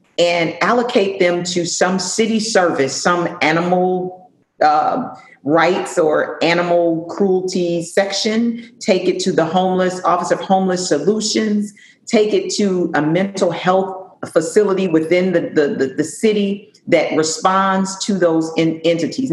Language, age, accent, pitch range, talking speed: English, 40-59, American, 160-205 Hz, 125 wpm